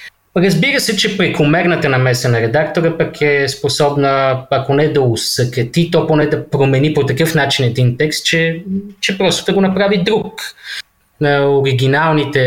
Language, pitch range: Bulgarian, 115-155 Hz